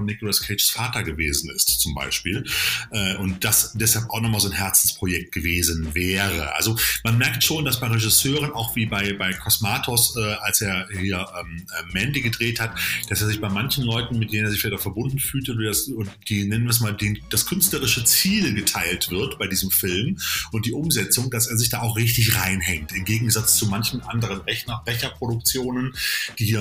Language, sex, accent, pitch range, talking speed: German, male, German, 100-125 Hz, 200 wpm